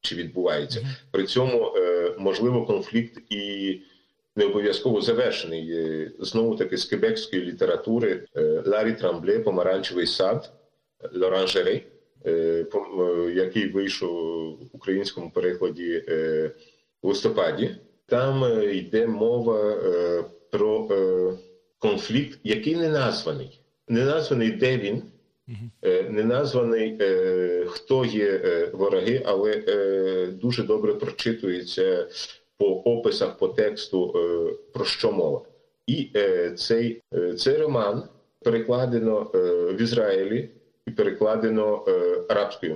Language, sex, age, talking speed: Ukrainian, male, 50-69, 90 wpm